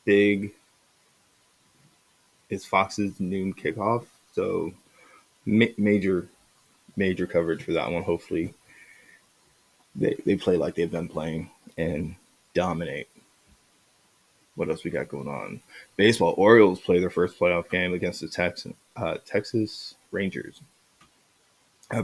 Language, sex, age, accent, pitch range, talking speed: English, male, 20-39, American, 90-110 Hz, 110 wpm